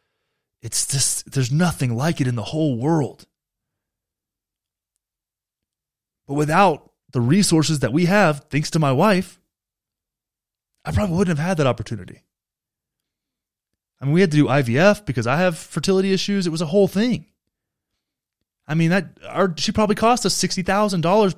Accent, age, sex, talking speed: American, 20-39, male, 150 wpm